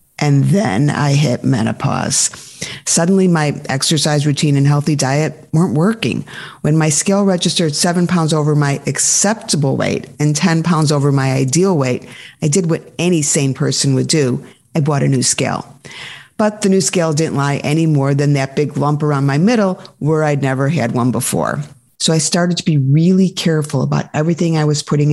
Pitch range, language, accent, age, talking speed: 145-185 Hz, English, American, 50-69, 185 wpm